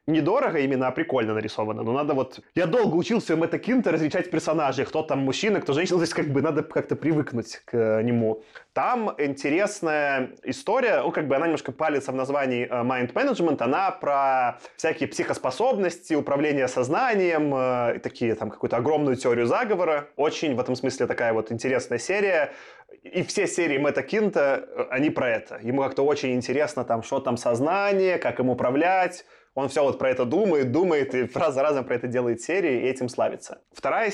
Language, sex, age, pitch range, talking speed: Russian, male, 20-39, 125-160 Hz, 175 wpm